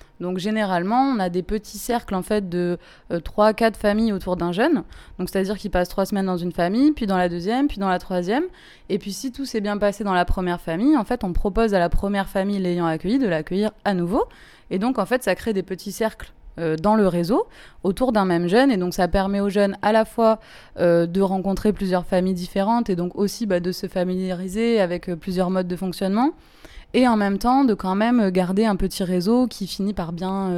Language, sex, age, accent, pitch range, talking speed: French, female, 20-39, French, 180-215 Hz, 235 wpm